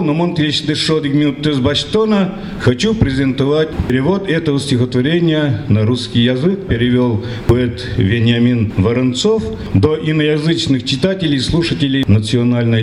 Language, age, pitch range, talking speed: Russian, 50-69, 115-160 Hz, 95 wpm